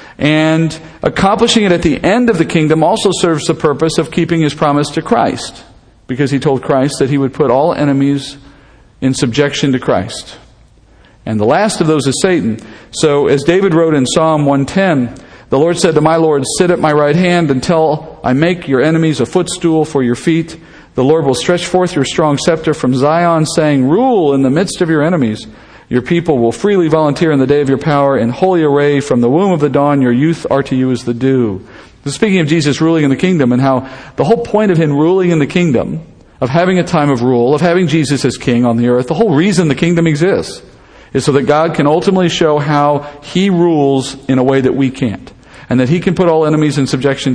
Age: 50-69